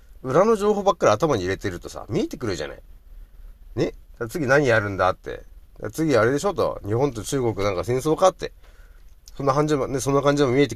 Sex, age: male, 30-49